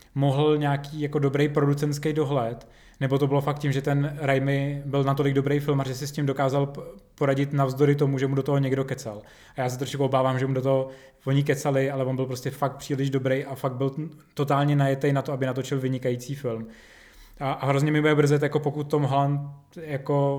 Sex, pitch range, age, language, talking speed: male, 130-145 Hz, 20-39, Czech, 210 wpm